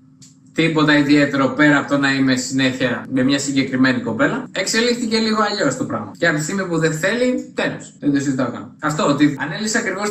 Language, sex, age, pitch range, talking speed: Greek, male, 20-39, 140-190 Hz, 195 wpm